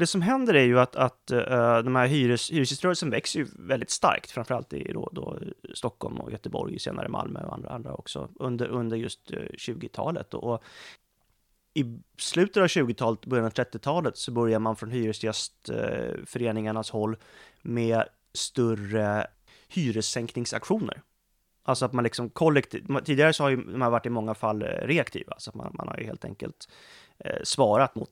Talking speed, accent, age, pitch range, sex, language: 160 wpm, native, 30-49, 115-130 Hz, male, Swedish